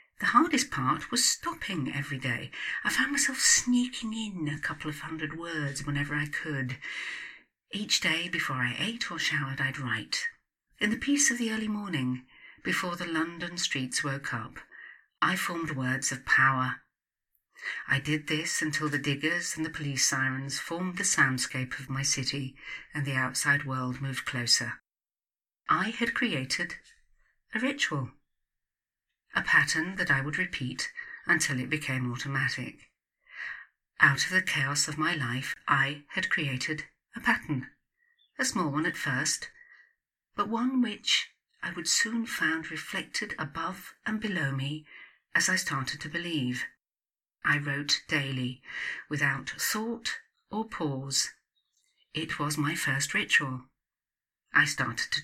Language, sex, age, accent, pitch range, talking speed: English, female, 50-69, British, 135-215 Hz, 145 wpm